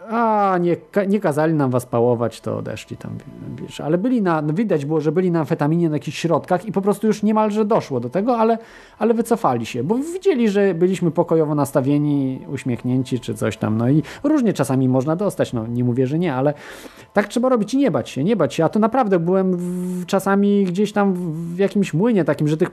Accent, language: native, Polish